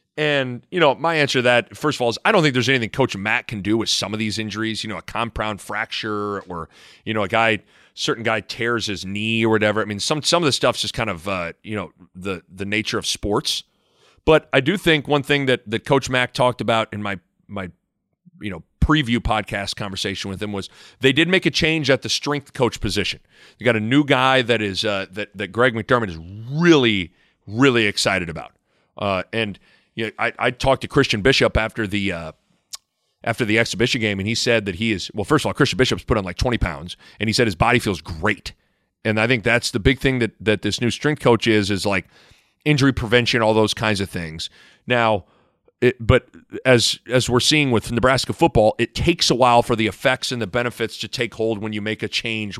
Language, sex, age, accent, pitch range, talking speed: English, male, 30-49, American, 105-130 Hz, 230 wpm